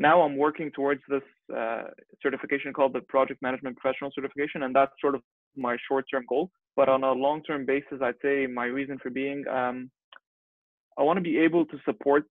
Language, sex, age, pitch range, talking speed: English, male, 20-39, 125-145 Hz, 190 wpm